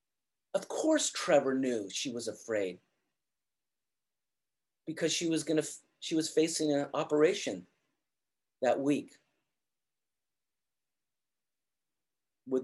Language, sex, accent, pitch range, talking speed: English, male, American, 120-160 Hz, 90 wpm